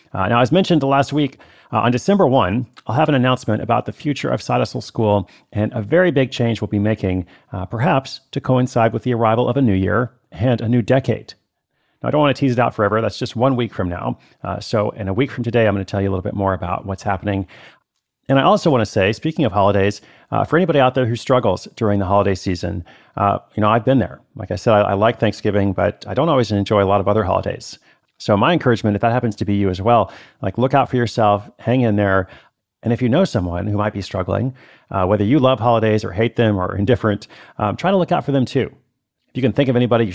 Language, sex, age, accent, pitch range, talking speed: English, male, 40-59, American, 100-130 Hz, 260 wpm